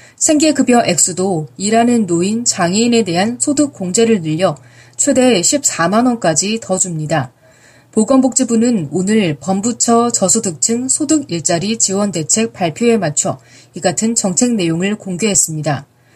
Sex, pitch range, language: female, 165-235 Hz, Korean